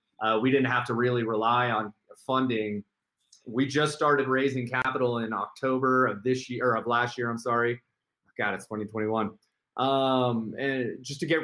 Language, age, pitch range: English, 30-49, 120-135 Hz